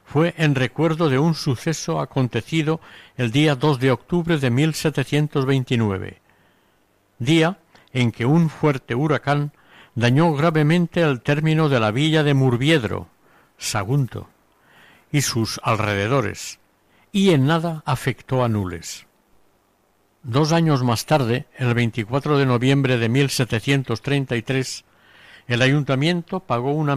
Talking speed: 120 wpm